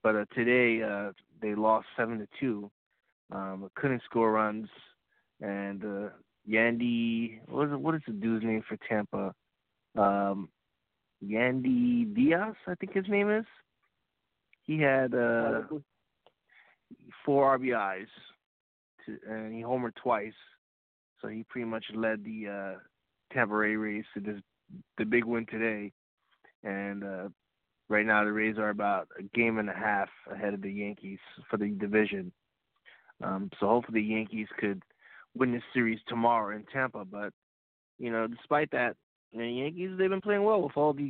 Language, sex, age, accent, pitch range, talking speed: English, male, 20-39, American, 105-135 Hz, 155 wpm